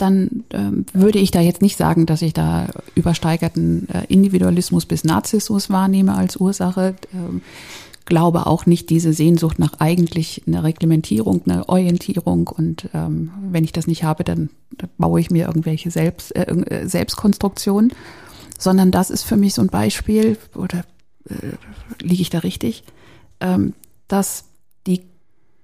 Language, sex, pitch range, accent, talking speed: German, female, 160-200 Hz, German, 145 wpm